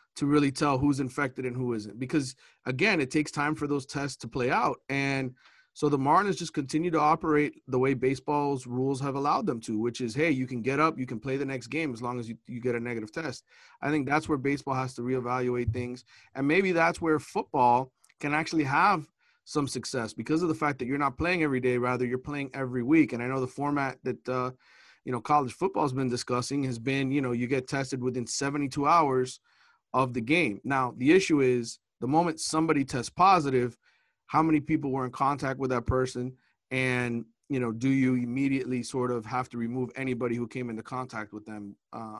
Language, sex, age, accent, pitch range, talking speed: English, male, 30-49, American, 125-145 Hz, 220 wpm